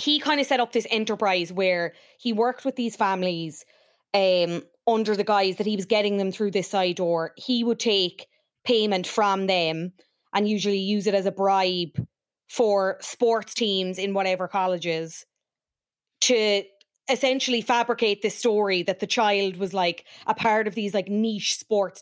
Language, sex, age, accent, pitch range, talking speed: English, female, 20-39, Irish, 180-220 Hz, 170 wpm